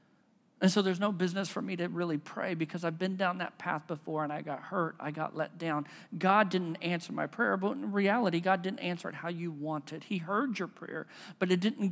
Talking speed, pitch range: 240 wpm, 180-225 Hz